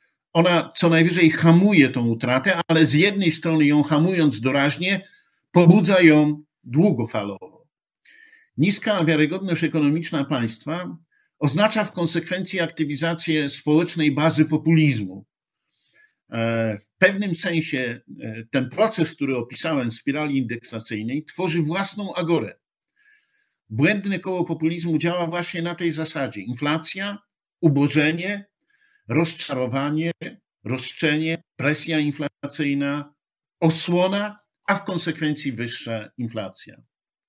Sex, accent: male, native